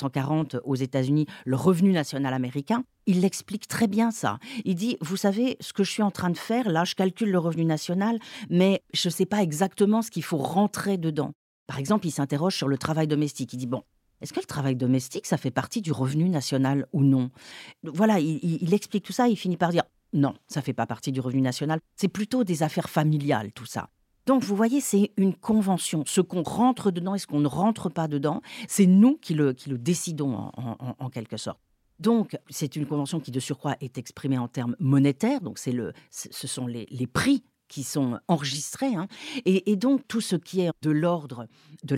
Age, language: 40-59, French